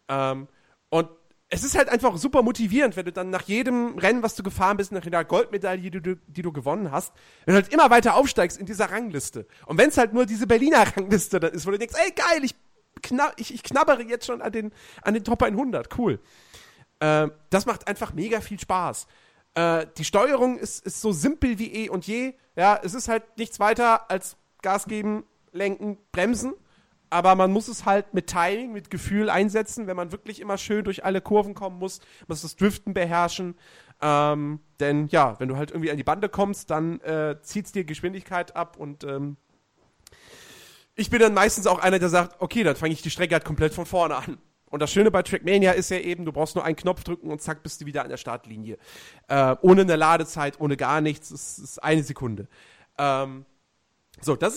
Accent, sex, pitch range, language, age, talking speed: German, male, 160-220 Hz, German, 40-59, 210 wpm